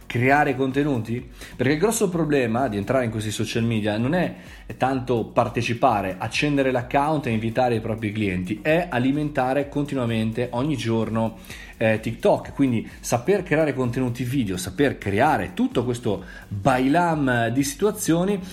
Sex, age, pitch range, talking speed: male, 30-49, 115-150 Hz, 135 wpm